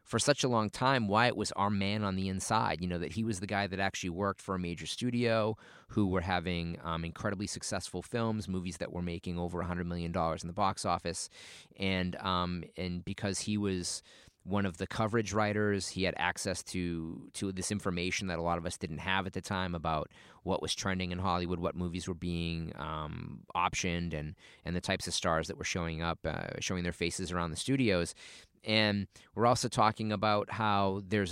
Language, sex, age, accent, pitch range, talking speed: English, male, 30-49, American, 90-105 Hz, 215 wpm